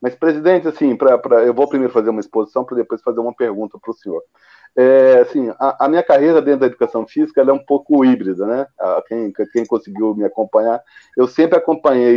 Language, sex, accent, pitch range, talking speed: Portuguese, male, Brazilian, 120-185 Hz, 210 wpm